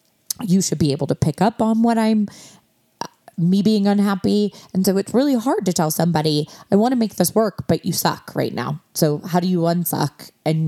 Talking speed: 215 wpm